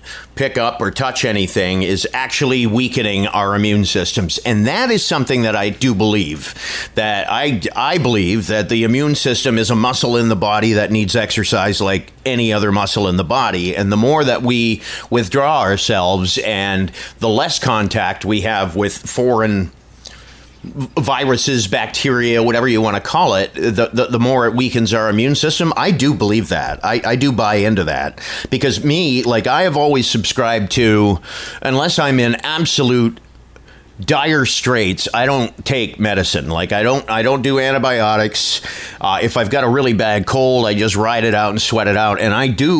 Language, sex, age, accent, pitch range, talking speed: English, male, 40-59, American, 105-130 Hz, 180 wpm